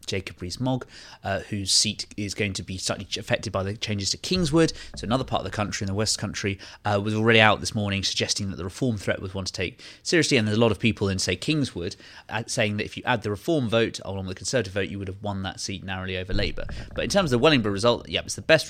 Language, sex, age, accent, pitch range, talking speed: English, male, 20-39, British, 100-125 Hz, 265 wpm